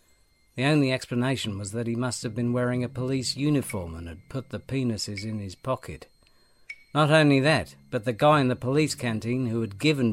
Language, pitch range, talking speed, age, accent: English, 100-130 Hz, 200 wpm, 50-69, British